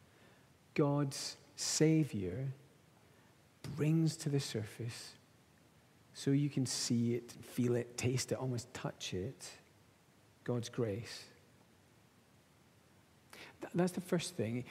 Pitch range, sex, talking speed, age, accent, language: 130-165 Hz, male, 100 wpm, 40-59, British, English